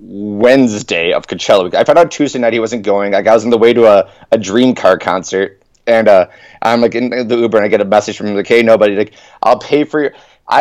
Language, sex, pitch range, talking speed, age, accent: English, male, 110-135 Hz, 255 wpm, 30-49, American